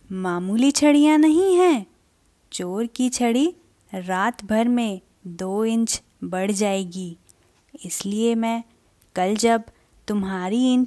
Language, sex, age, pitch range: English, female, 20-39, 185-255 Hz